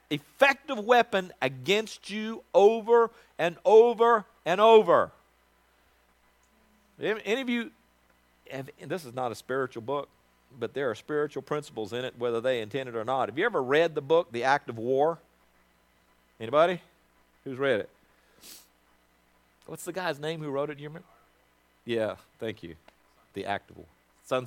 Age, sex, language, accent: 50-69, male, English, American